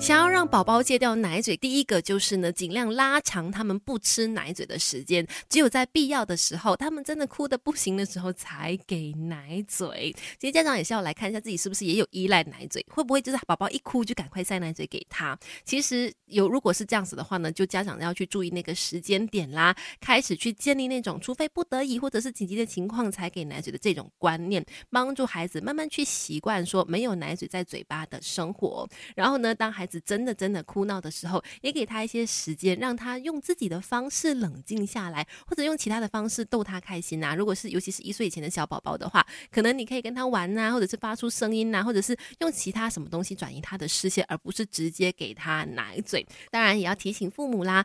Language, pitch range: Chinese, 180-245 Hz